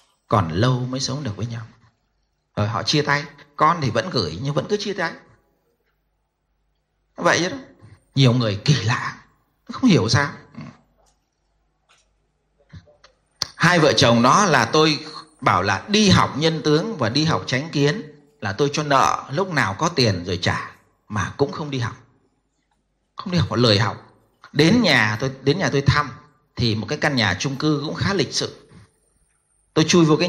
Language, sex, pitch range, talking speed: Vietnamese, male, 120-150 Hz, 175 wpm